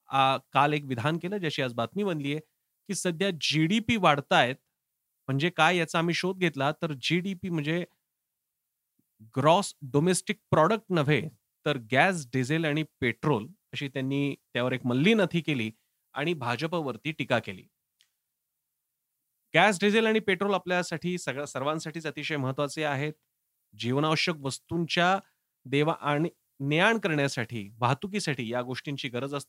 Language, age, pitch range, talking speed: Marathi, 30-49, 140-180 Hz, 105 wpm